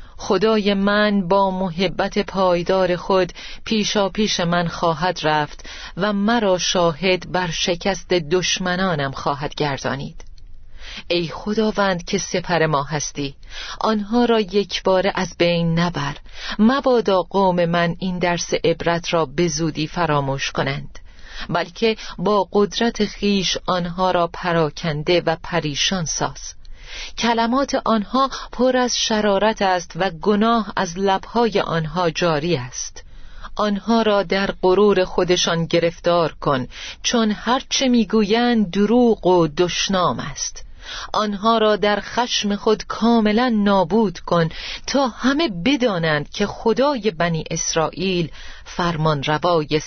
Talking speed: 115 wpm